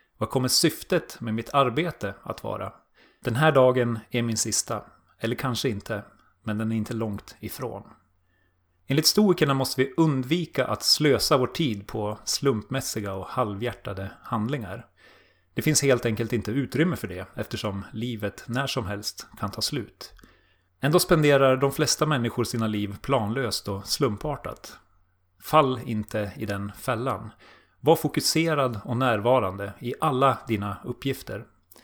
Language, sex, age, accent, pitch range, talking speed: Swedish, male, 30-49, native, 105-135 Hz, 145 wpm